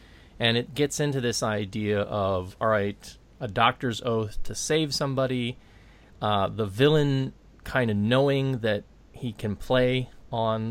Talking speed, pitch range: 145 wpm, 100-125 Hz